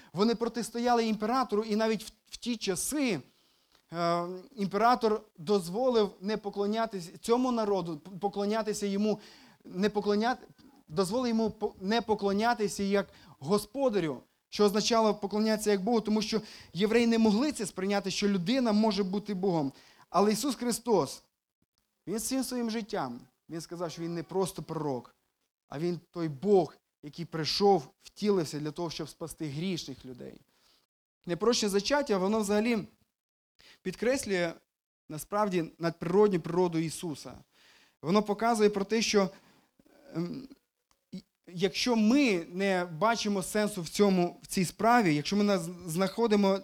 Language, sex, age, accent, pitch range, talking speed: Ukrainian, male, 20-39, native, 175-220 Hz, 125 wpm